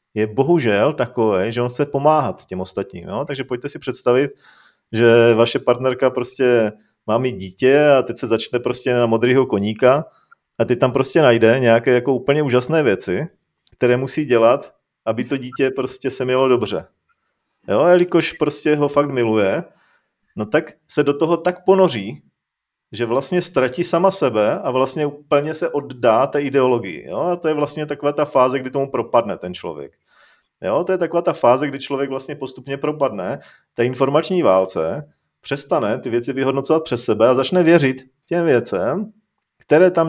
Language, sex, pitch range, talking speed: Czech, male, 125-150 Hz, 170 wpm